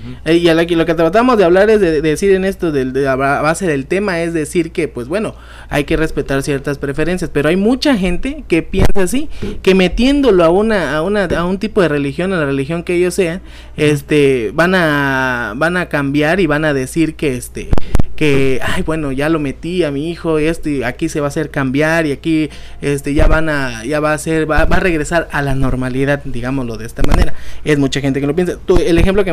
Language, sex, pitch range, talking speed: Spanish, male, 145-185 Hz, 235 wpm